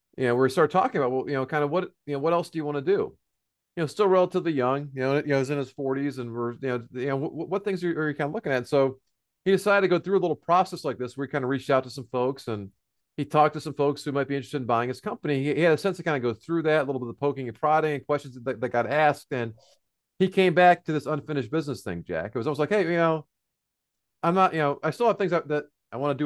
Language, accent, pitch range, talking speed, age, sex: English, American, 135-170 Hz, 315 wpm, 40-59, male